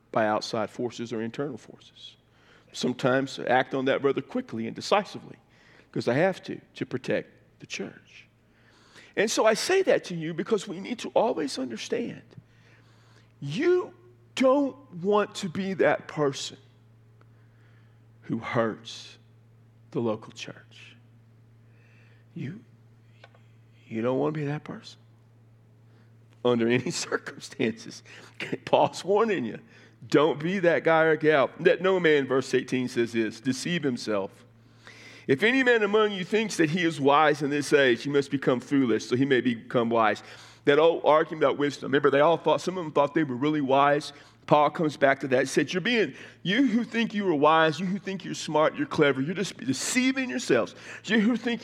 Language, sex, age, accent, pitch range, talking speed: English, male, 50-69, American, 115-180 Hz, 165 wpm